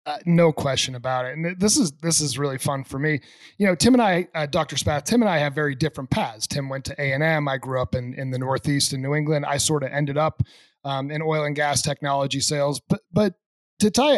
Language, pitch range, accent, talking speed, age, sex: English, 135-160 Hz, American, 255 wpm, 30-49, male